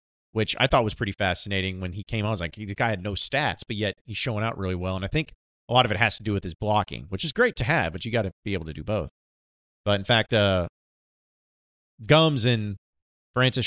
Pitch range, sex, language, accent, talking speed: 95-120 Hz, male, English, American, 255 wpm